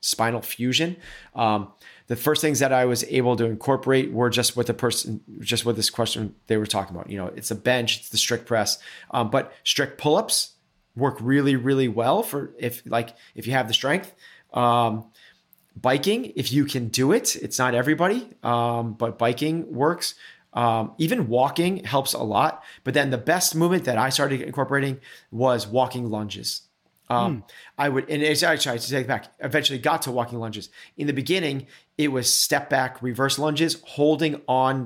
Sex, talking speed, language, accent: male, 190 wpm, English, American